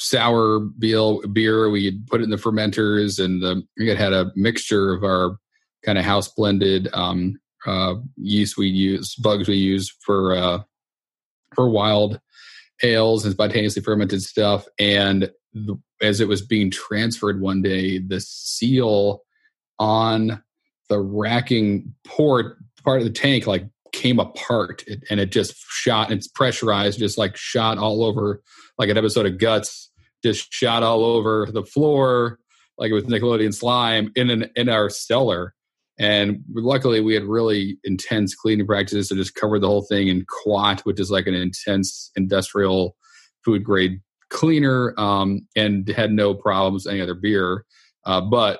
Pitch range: 100-110 Hz